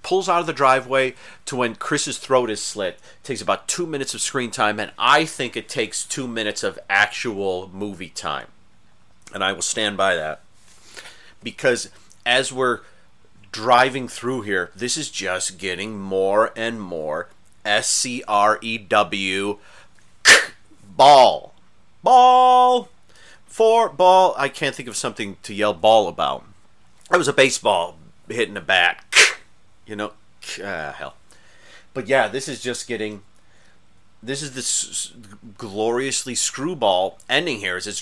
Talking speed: 150 wpm